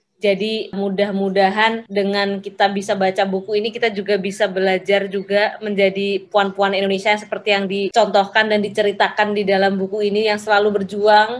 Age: 20-39